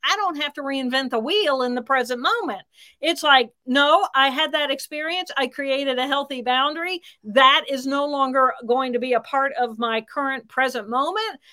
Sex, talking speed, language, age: female, 195 wpm, English, 50-69